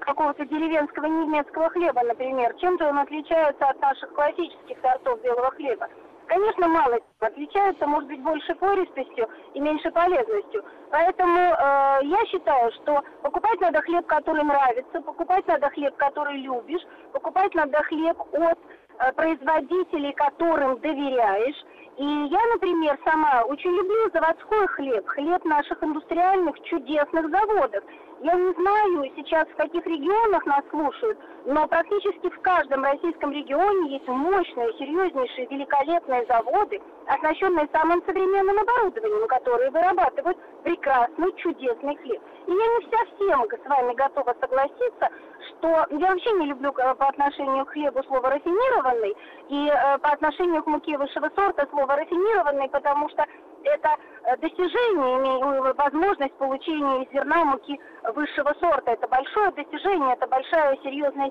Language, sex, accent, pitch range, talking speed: Russian, female, native, 280-370 Hz, 130 wpm